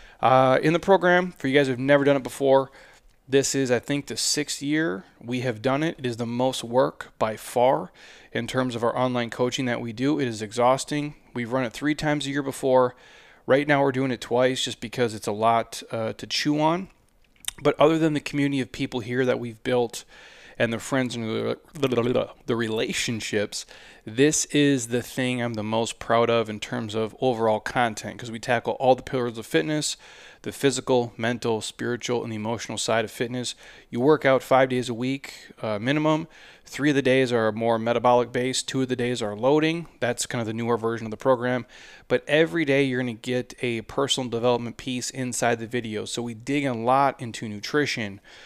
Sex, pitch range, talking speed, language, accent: male, 115-135 Hz, 205 wpm, English, American